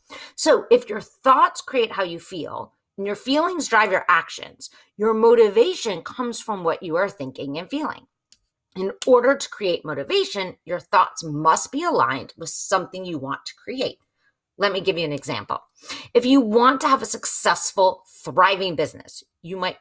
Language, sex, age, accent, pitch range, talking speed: English, female, 30-49, American, 185-285 Hz, 175 wpm